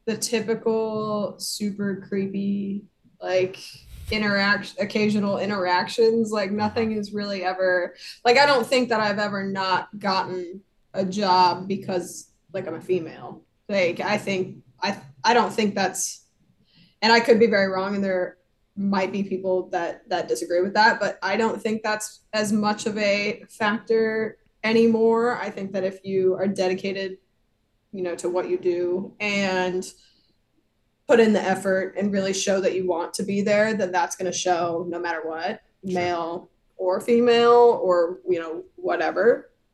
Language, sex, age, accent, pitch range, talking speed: English, female, 20-39, American, 185-215 Hz, 160 wpm